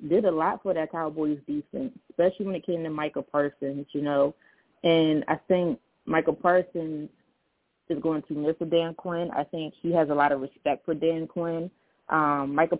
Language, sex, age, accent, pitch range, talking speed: English, female, 20-39, American, 155-185 Hz, 190 wpm